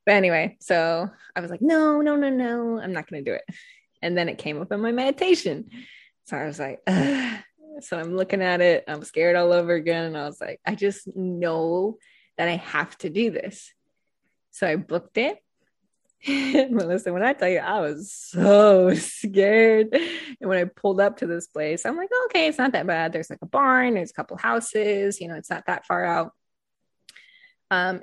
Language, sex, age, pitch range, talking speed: English, female, 20-39, 175-230 Hz, 205 wpm